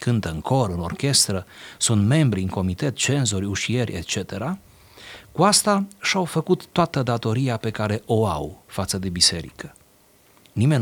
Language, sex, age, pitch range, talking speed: Romanian, male, 30-49, 100-135 Hz, 145 wpm